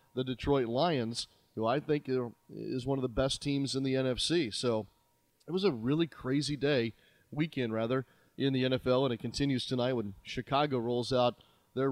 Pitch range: 120-145 Hz